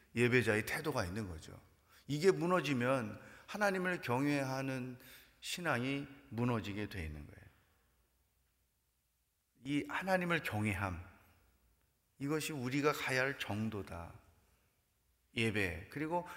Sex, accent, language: male, native, Korean